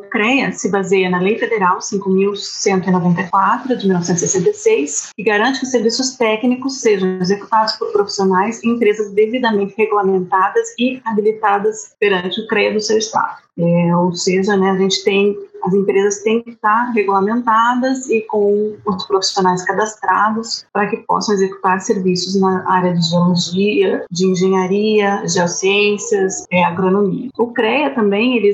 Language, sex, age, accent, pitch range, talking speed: Portuguese, female, 30-49, Brazilian, 190-230 Hz, 140 wpm